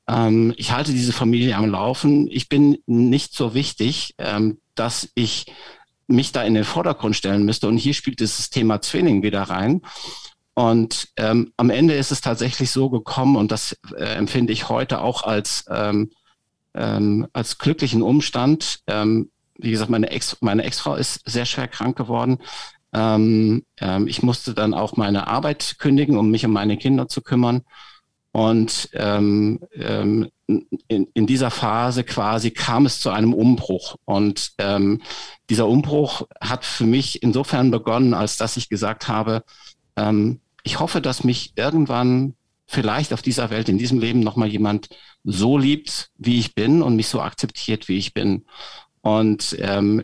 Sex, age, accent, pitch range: male, 50-69, German, 110-135 Hz